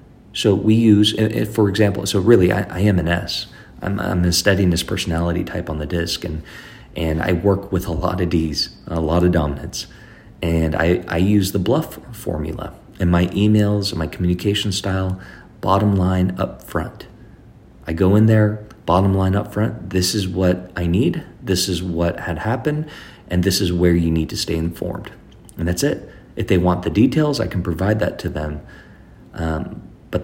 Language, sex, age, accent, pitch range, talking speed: English, male, 40-59, American, 85-105 Hz, 185 wpm